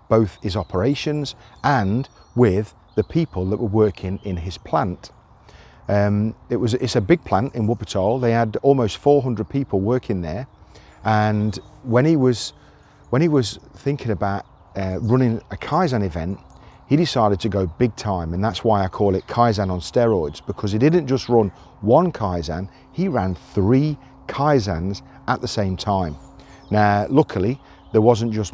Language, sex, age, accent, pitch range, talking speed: English, male, 40-59, British, 95-125 Hz, 165 wpm